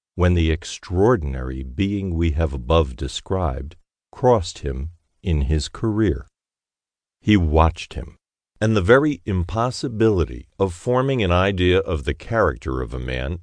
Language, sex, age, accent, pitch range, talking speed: English, male, 50-69, American, 80-105 Hz, 135 wpm